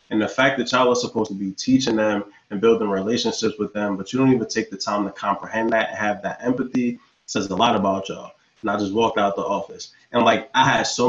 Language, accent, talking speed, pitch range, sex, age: English, American, 255 wpm, 105-120 Hz, male, 20-39